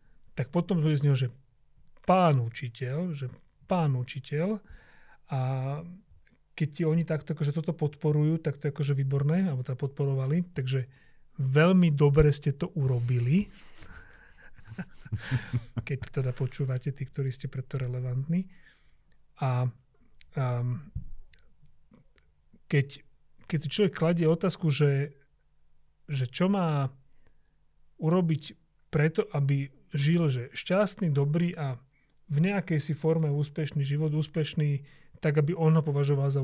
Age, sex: 40-59, male